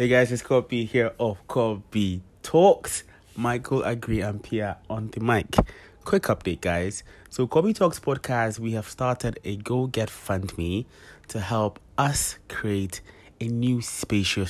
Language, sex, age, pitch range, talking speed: English, male, 20-39, 90-115 Hz, 155 wpm